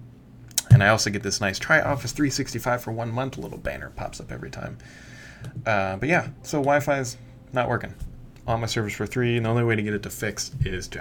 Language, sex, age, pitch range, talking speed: English, male, 20-39, 100-125 Hz, 235 wpm